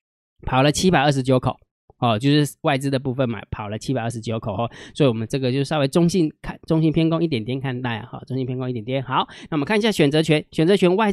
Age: 20-39